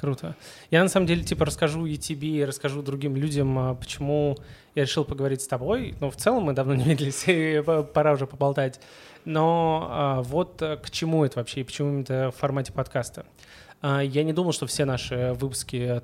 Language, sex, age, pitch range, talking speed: Russian, male, 20-39, 130-150 Hz, 170 wpm